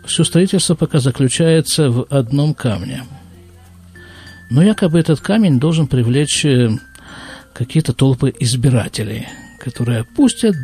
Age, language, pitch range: 50-69, Russian, 120-165 Hz